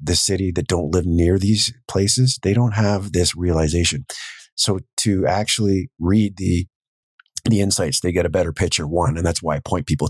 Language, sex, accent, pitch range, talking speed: English, male, American, 80-100 Hz, 190 wpm